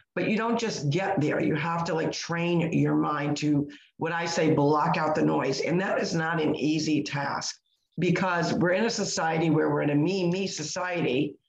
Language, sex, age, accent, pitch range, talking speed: English, female, 50-69, American, 150-185 Hz, 205 wpm